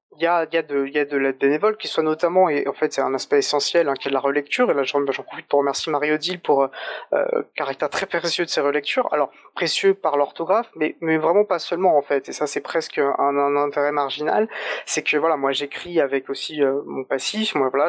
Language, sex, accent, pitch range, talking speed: French, male, French, 145-180 Hz, 260 wpm